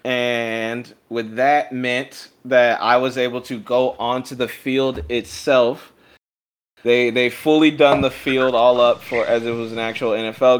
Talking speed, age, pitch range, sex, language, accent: 165 wpm, 20-39, 110-125 Hz, male, English, American